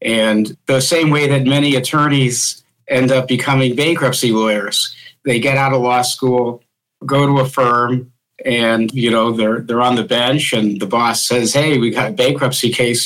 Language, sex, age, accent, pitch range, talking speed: English, male, 50-69, American, 115-135 Hz, 185 wpm